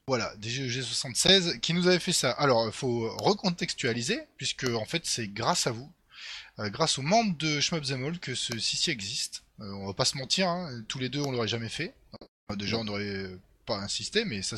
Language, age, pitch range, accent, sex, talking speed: French, 20-39, 115-175 Hz, French, male, 205 wpm